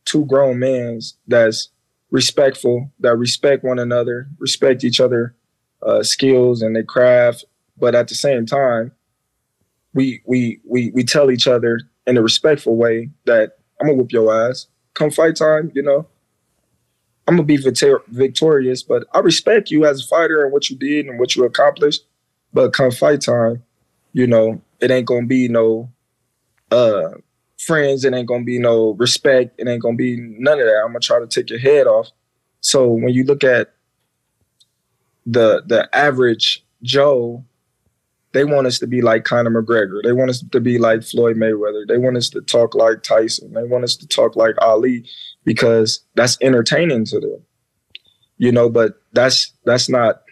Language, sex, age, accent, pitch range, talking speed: English, male, 20-39, American, 120-140 Hz, 180 wpm